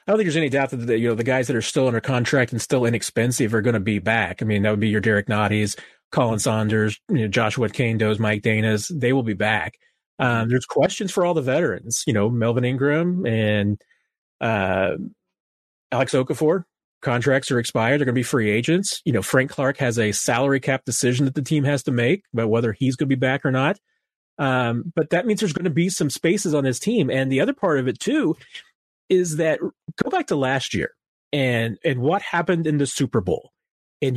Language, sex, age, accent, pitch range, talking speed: English, male, 30-49, American, 115-155 Hz, 225 wpm